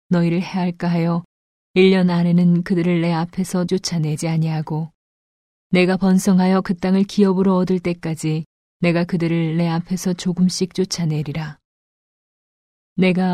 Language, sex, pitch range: Korean, female, 165-185 Hz